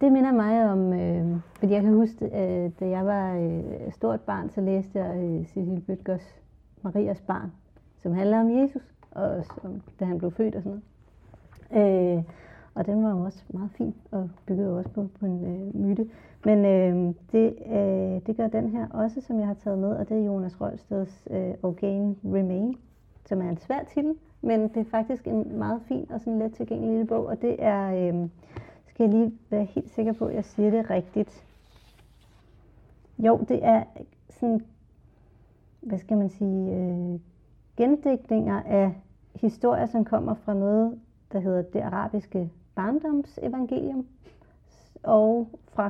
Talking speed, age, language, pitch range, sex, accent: 175 wpm, 30-49, Danish, 190-225 Hz, female, native